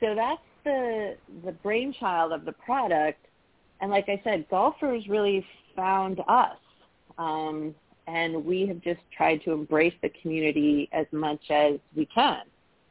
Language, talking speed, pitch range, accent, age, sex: English, 145 wpm, 160-195 Hz, American, 40-59, female